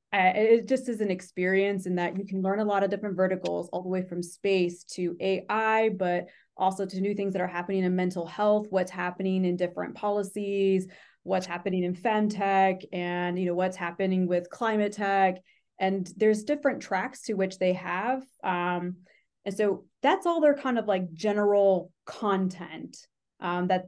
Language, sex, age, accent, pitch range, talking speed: English, female, 20-39, American, 185-215 Hz, 180 wpm